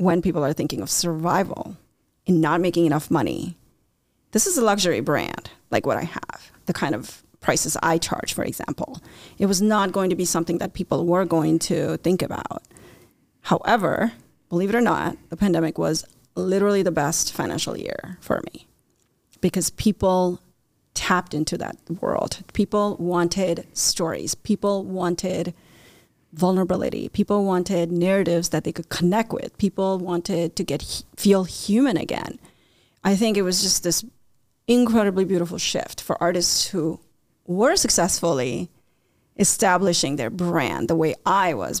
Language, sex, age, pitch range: English, female, 30-49, 165-195 Hz